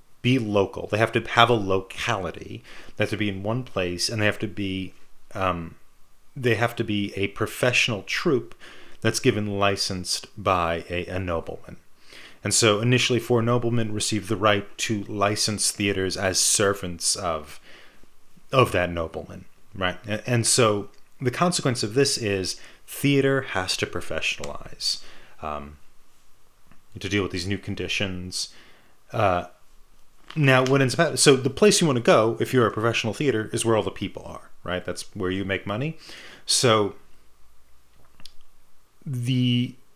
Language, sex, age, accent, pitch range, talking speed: English, male, 30-49, American, 95-120 Hz, 150 wpm